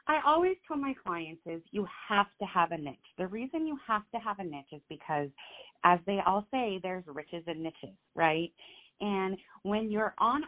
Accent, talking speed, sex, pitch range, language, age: American, 200 wpm, female, 165-220 Hz, English, 30-49